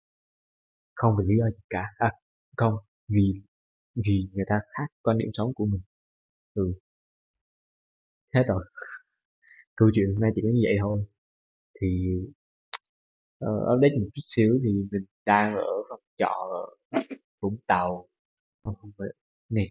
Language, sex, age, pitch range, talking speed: Vietnamese, male, 20-39, 95-125 Hz, 140 wpm